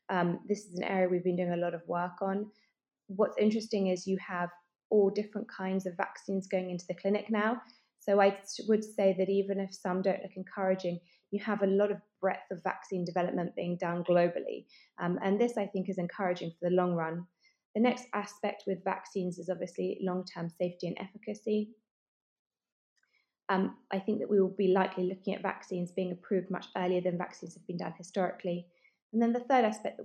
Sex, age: female, 20-39